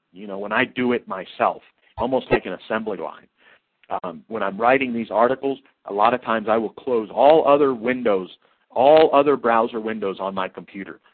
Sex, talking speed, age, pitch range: male, 190 wpm, 50-69, 100-125 Hz